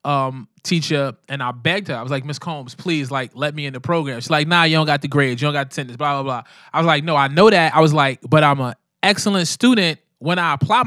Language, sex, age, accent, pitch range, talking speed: English, male, 20-39, American, 135-170 Hz, 285 wpm